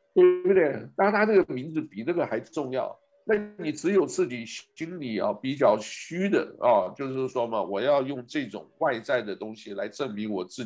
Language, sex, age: Chinese, male, 60-79